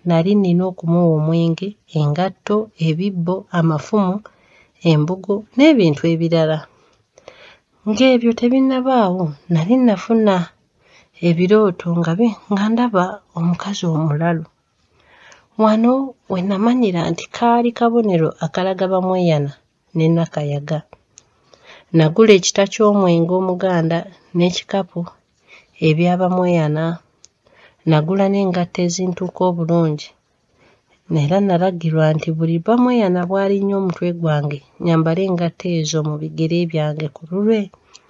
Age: 40-59